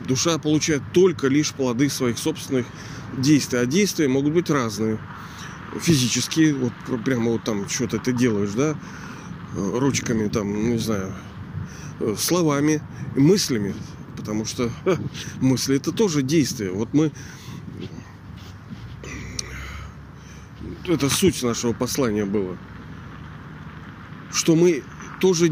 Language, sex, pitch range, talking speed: Russian, male, 120-160 Hz, 105 wpm